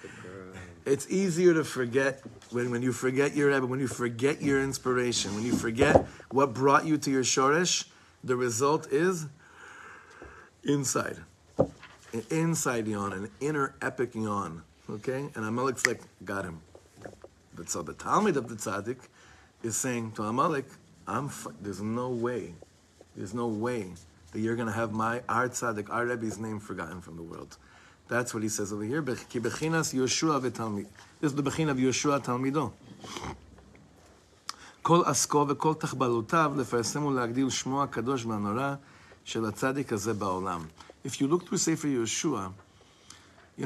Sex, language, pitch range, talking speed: male, English, 105-140 Hz, 130 wpm